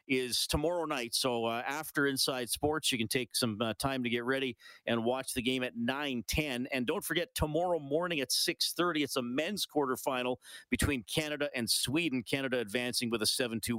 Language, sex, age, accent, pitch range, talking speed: English, male, 40-59, American, 110-140 Hz, 185 wpm